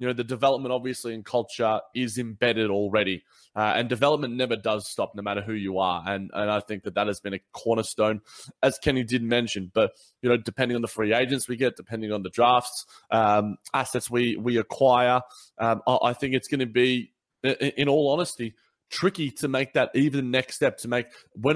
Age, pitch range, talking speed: 20-39, 110-130 Hz, 210 wpm